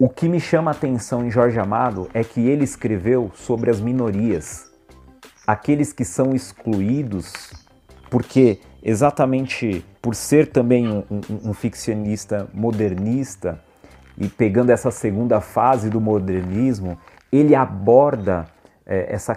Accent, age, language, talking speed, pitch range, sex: Brazilian, 40-59, Portuguese, 125 wpm, 100-125 Hz, male